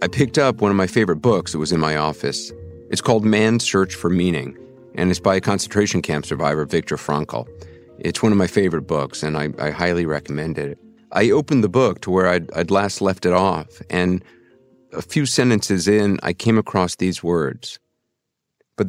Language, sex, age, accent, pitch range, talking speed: English, male, 50-69, American, 85-105 Hz, 200 wpm